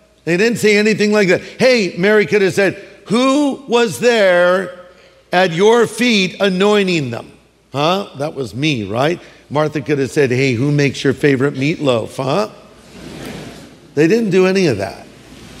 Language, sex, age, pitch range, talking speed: English, male, 50-69, 155-215 Hz, 160 wpm